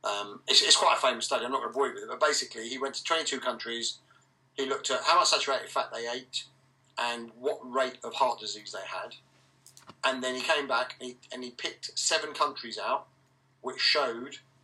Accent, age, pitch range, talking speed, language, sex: British, 40-59, 120-135 Hz, 220 wpm, English, male